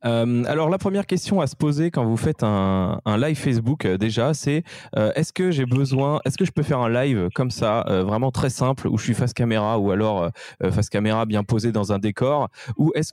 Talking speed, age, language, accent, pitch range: 240 wpm, 20-39, French, French, 110-140 Hz